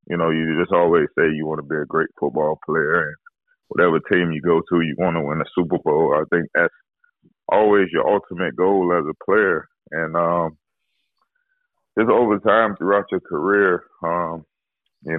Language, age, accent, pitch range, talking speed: English, 20-39, American, 75-85 Hz, 185 wpm